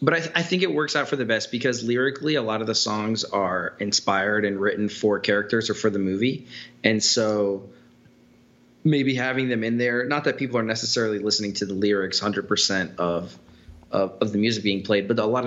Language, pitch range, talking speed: English, 95-120 Hz, 210 wpm